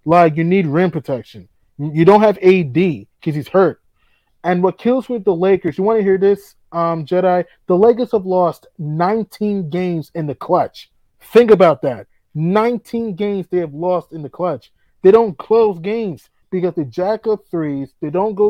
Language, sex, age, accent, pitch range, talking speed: English, male, 20-39, American, 160-205 Hz, 185 wpm